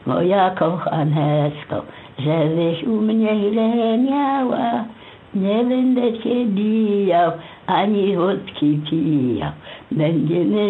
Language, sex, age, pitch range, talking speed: Polish, female, 60-79, 160-225 Hz, 80 wpm